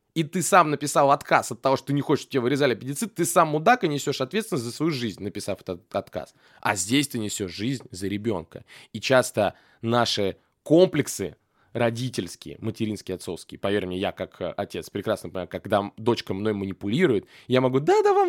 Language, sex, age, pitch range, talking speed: Russian, male, 20-39, 95-140 Hz, 185 wpm